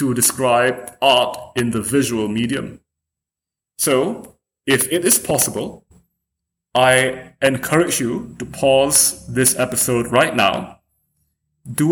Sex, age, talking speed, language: male, 30-49, 110 wpm, English